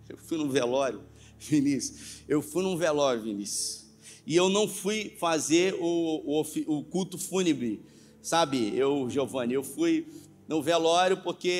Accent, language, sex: Brazilian, Portuguese, male